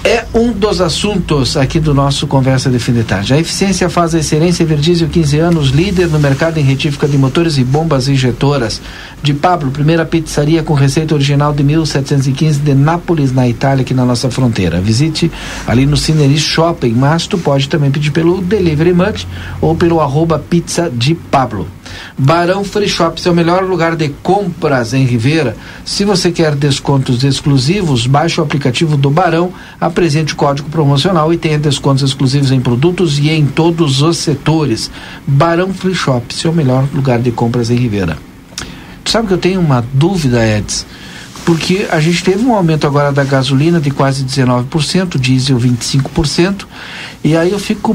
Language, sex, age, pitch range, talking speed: Portuguese, male, 60-79, 130-170 Hz, 170 wpm